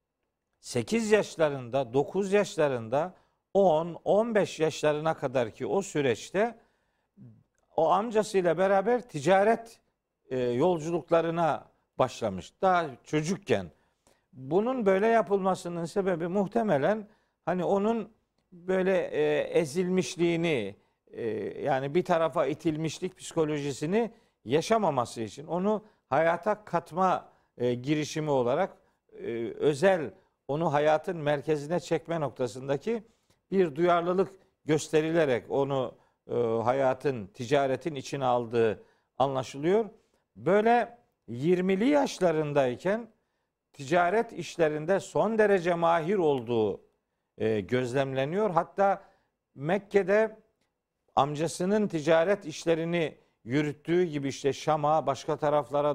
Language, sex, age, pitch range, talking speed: Turkish, male, 50-69, 145-195 Hz, 85 wpm